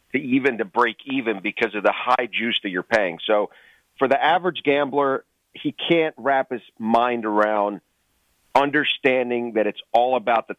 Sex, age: male, 40-59